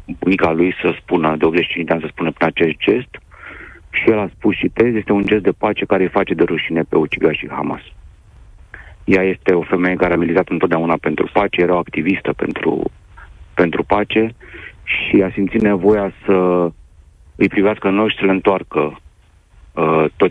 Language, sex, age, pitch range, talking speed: Romanian, male, 40-59, 85-105 Hz, 185 wpm